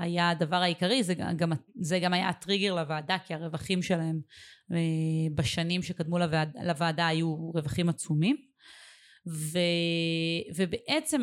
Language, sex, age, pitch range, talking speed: Hebrew, female, 20-39, 170-215 Hz, 110 wpm